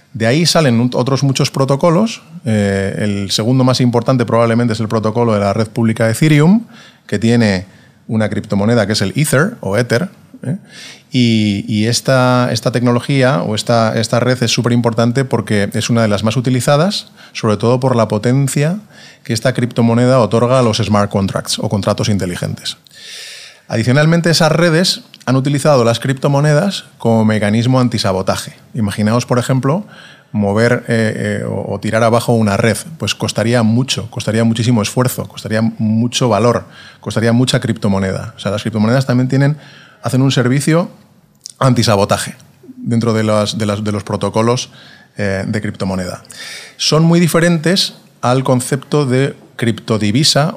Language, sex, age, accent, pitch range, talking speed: Spanish, male, 30-49, Spanish, 110-135 Hz, 150 wpm